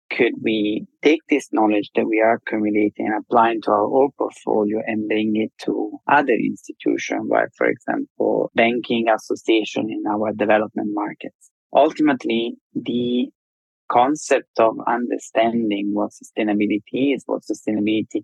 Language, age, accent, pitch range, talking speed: English, 20-39, Italian, 105-130 Hz, 130 wpm